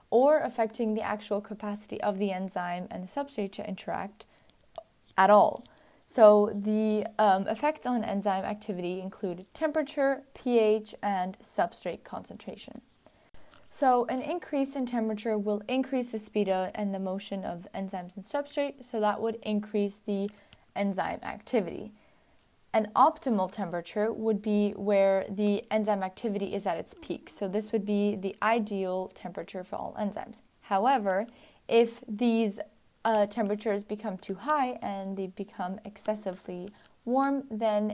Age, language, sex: 10-29, English, female